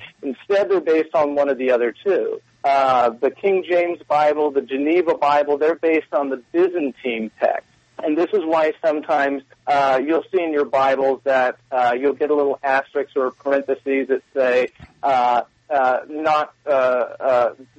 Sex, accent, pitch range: male, American, 130-170 Hz